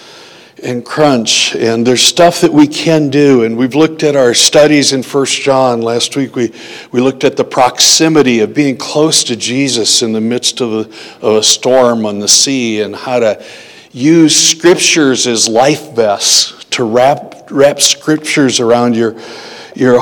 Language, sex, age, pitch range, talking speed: English, male, 60-79, 115-150 Hz, 170 wpm